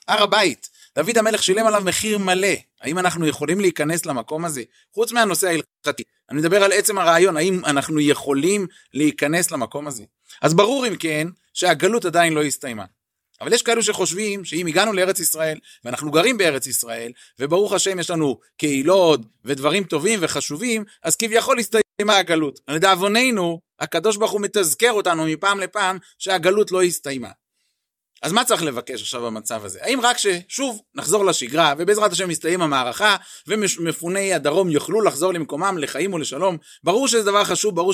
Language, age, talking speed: Hebrew, 30-49, 155 wpm